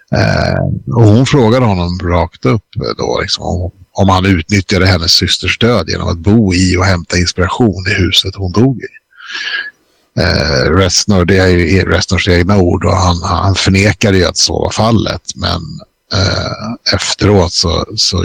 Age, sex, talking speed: 60-79, male, 160 wpm